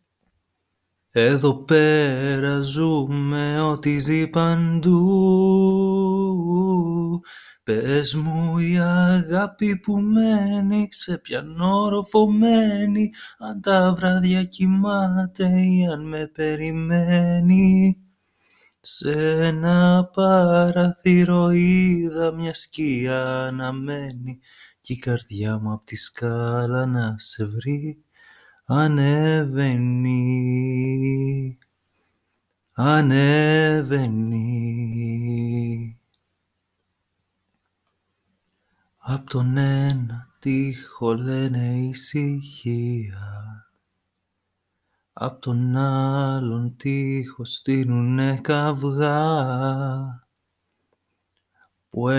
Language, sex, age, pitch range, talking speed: Greek, male, 30-49, 120-165 Hz, 60 wpm